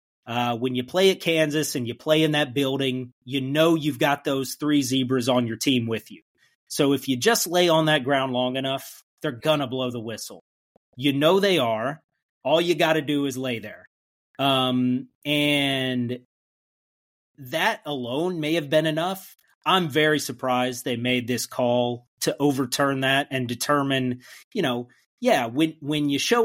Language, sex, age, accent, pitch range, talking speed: English, male, 30-49, American, 125-160 Hz, 175 wpm